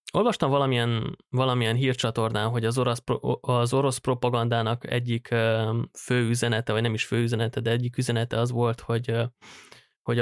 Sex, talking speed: male, 145 wpm